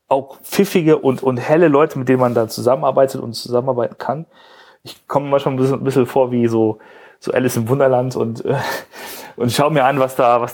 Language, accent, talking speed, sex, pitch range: German, German, 215 wpm, male, 115-135 Hz